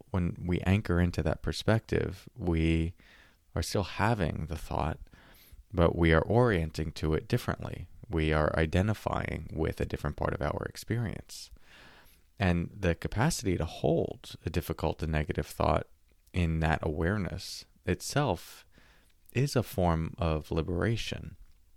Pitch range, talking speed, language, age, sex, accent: 80-95 Hz, 130 wpm, English, 30-49, male, American